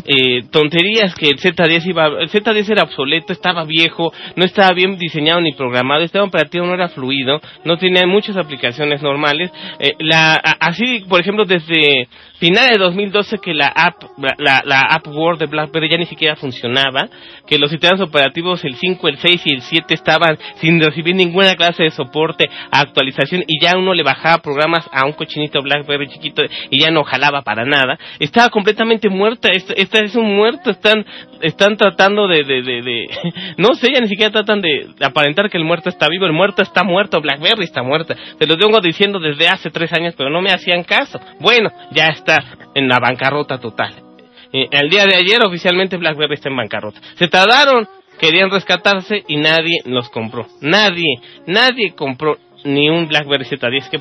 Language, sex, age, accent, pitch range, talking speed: English, male, 30-49, Mexican, 145-195 Hz, 185 wpm